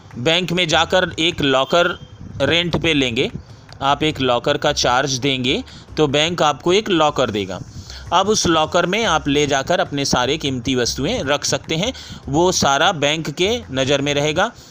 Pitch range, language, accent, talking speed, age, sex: 130-160 Hz, Hindi, native, 165 wpm, 30-49, male